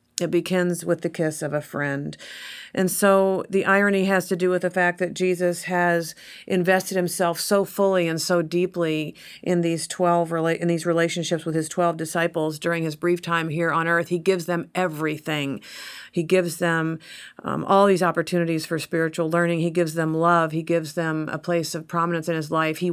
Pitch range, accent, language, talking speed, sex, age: 160-190 Hz, American, English, 195 wpm, female, 50-69